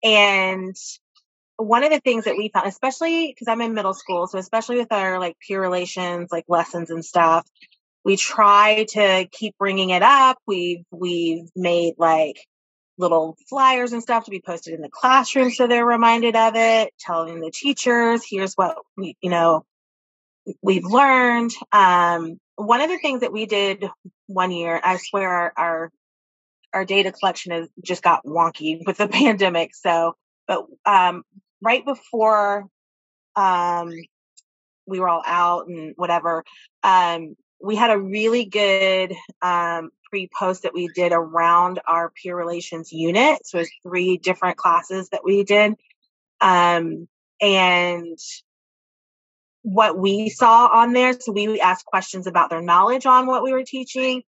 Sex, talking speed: female, 160 wpm